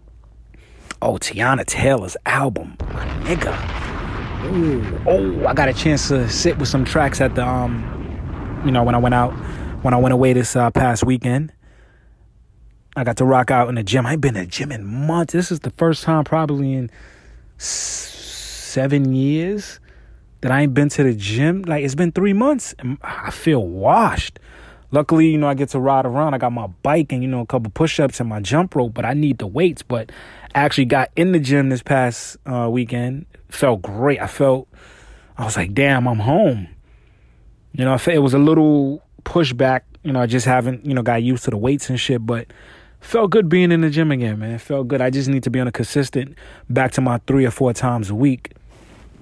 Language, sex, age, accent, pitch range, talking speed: English, male, 20-39, American, 120-145 Hz, 215 wpm